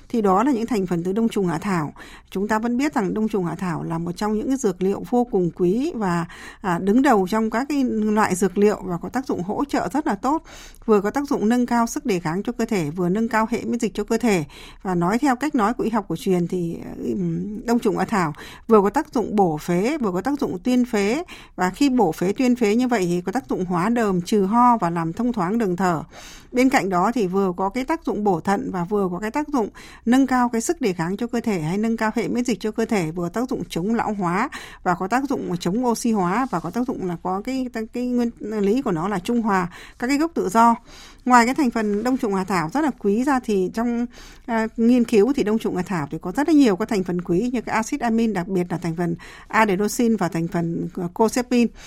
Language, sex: Vietnamese, female